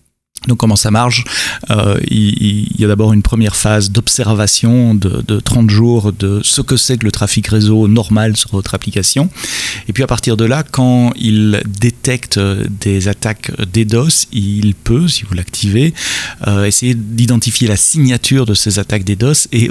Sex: male